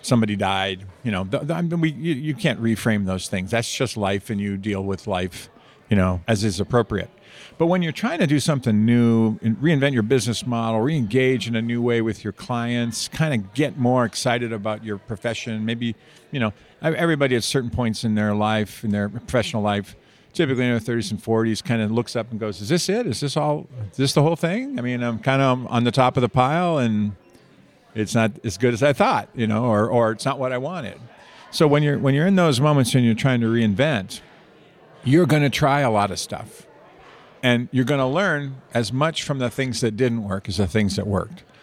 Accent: American